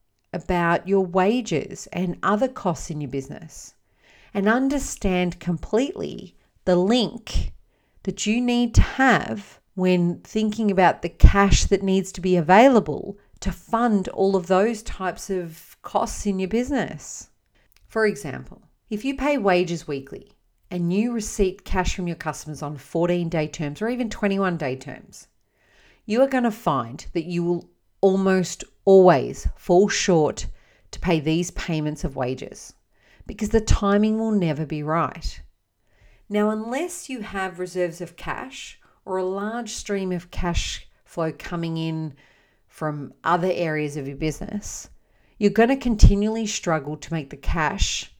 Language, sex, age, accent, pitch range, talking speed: English, female, 40-59, Australian, 155-205 Hz, 145 wpm